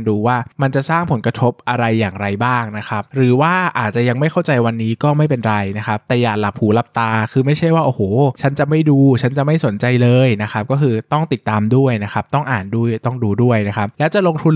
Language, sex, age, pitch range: Thai, male, 20-39, 105-135 Hz